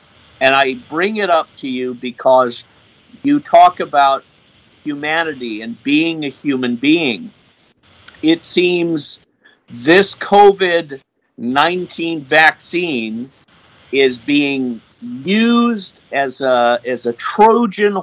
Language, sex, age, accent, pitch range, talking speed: English, male, 50-69, American, 130-195 Hz, 105 wpm